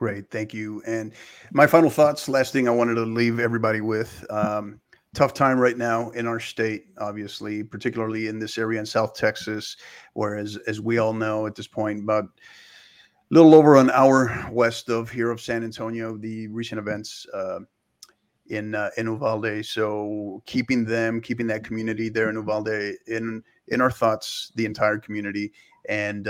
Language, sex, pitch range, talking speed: English, male, 105-115 Hz, 175 wpm